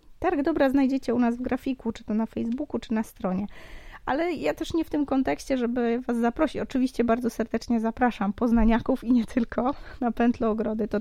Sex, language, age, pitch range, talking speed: female, Polish, 20-39, 220-255 Hz, 195 wpm